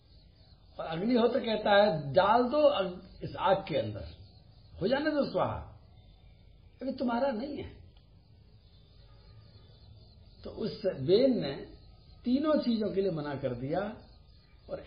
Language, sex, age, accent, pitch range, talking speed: Hindi, male, 60-79, native, 130-195 Hz, 120 wpm